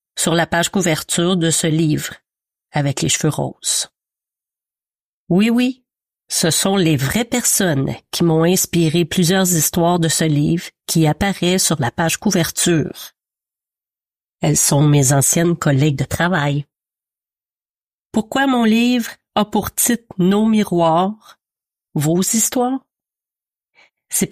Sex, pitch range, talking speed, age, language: female, 155-195 Hz, 125 wpm, 40-59, French